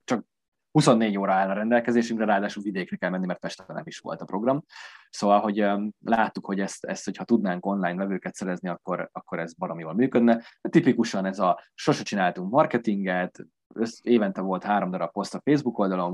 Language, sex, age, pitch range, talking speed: Hungarian, male, 20-39, 90-115 Hz, 180 wpm